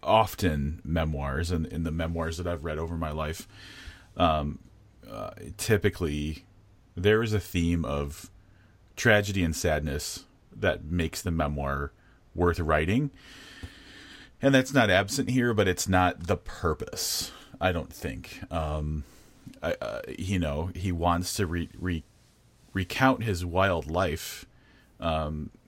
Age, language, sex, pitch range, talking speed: 30-49, English, male, 80-95 Hz, 135 wpm